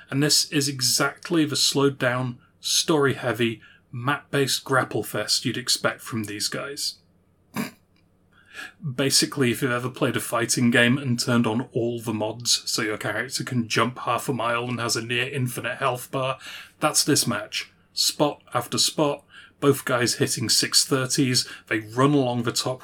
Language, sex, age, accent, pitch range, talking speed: English, male, 30-49, British, 115-145 Hz, 150 wpm